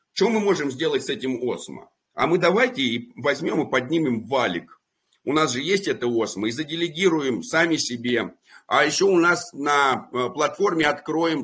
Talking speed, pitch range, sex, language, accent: 165 wpm, 130-205 Hz, male, Russian, native